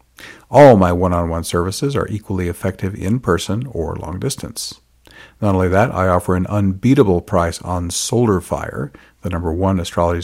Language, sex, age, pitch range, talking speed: English, male, 50-69, 85-105 Hz, 140 wpm